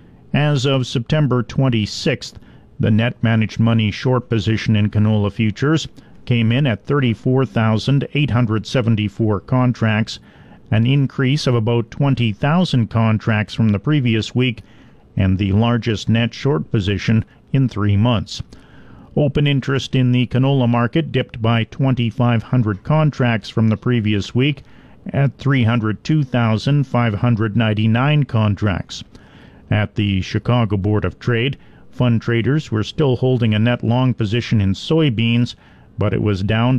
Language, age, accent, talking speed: English, 50-69, American, 120 wpm